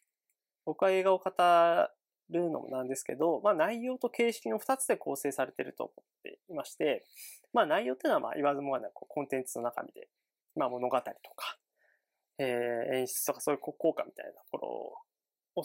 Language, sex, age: Japanese, male, 20-39